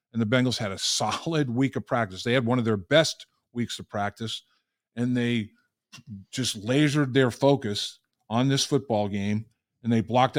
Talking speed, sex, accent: 180 wpm, male, American